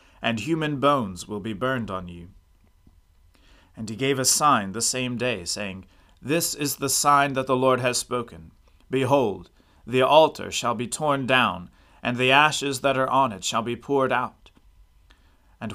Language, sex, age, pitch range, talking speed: English, male, 30-49, 95-135 Hz, 170 wpm